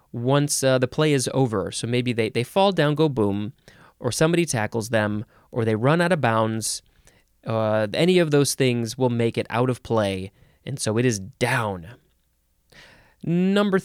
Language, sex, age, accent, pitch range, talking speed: English, male, 20-39, American, 115-155 Hz, 180 wpm